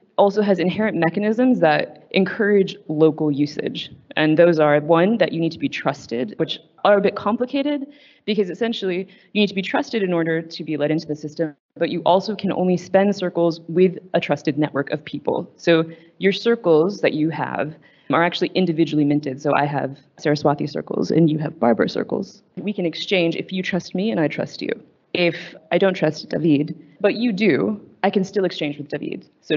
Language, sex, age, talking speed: English, female, 20-39, 195 wpm